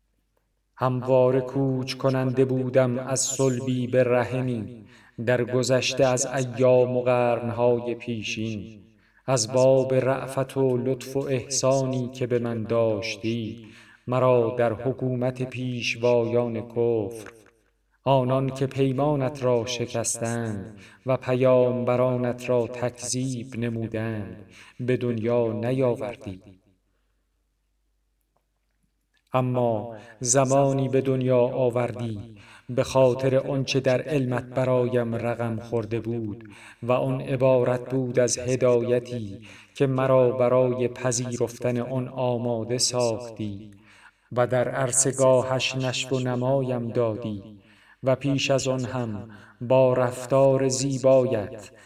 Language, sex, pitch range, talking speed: Persian, male, 115-130 Hz, 100 wpm